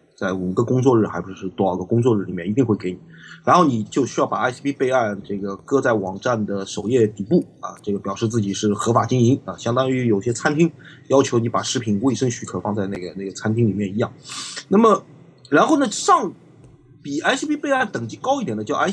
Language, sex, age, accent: Chinese, male, 30-49, native